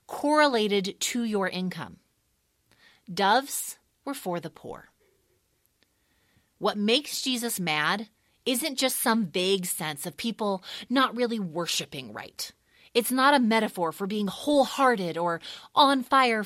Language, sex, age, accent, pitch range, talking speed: English, female, 30-49, American, 160-220 Hz, 125 wpm